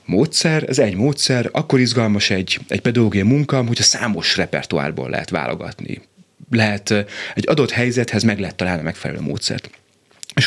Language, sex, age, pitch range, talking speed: Hungarian, male, 30-49, 90-125 Hz, 155 wpm